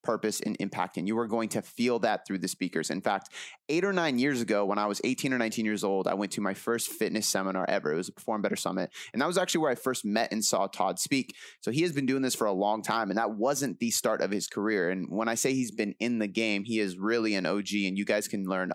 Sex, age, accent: male, 30-49, American